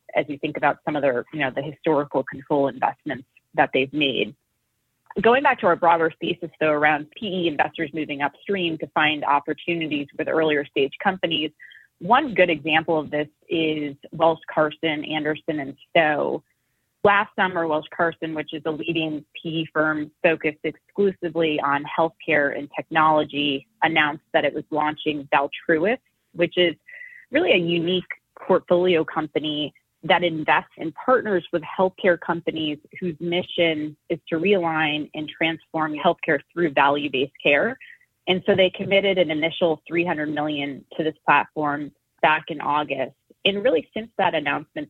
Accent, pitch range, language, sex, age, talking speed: American, 150-170 Hz, English, female, 30-49, 150 wpm